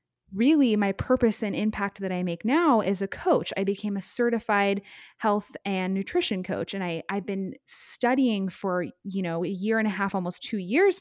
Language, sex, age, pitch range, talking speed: English, female, 20-39, 195-260 Hz, 195 wpm